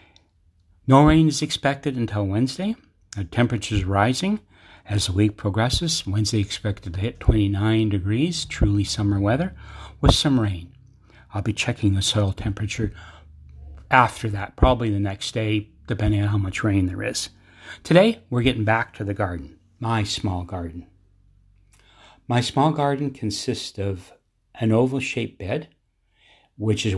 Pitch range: 95-115 Hz